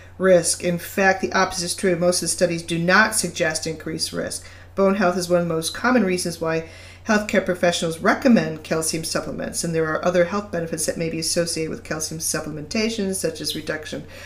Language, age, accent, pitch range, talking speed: English, 50-69, American, 155-190 Hz, 195 wpm